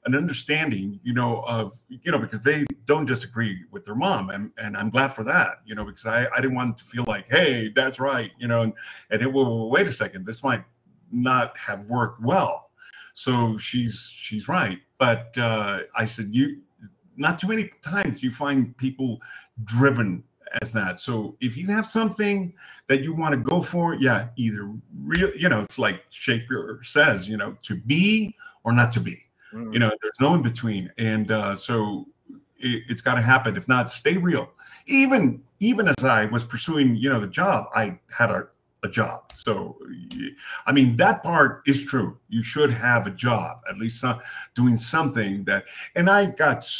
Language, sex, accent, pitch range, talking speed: English, male, American, 115-140 Hz, 190 wpm